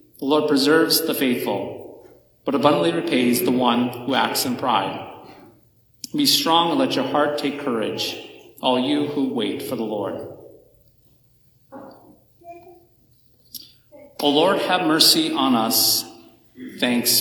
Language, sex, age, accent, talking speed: English, male, 40-59, American, 125 wpm